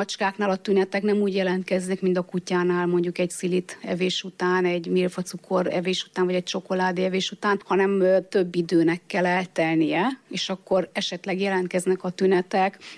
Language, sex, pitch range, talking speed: Hungarian, female, 180-195 Hz, 160 wpm